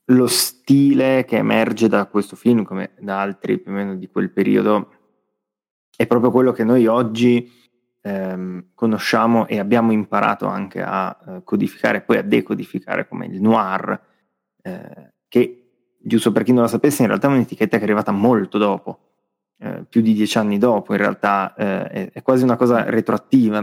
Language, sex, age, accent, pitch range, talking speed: Italian, male, 20-39, native, 105-120 Hz, 180 wpm